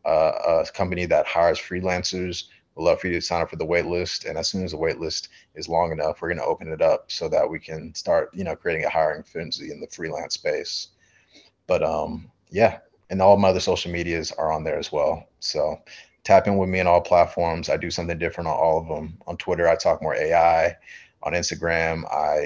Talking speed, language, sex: 225 wpm, English, male